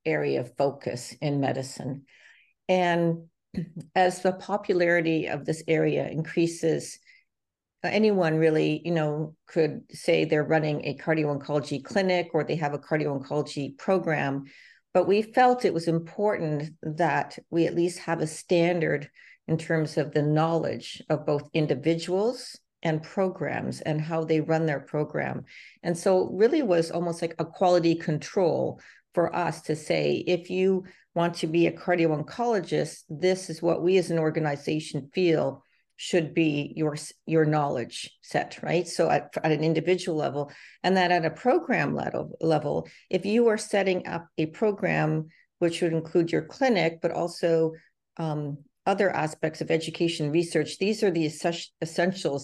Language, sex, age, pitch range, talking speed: English, female, 50-69, 155-180 Hz, 150 wpm